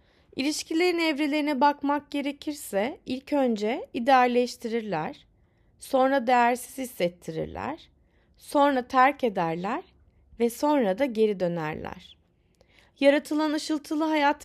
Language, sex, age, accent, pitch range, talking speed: Turkish, female, 30-49, native, 230-290 Hz, 85 wpm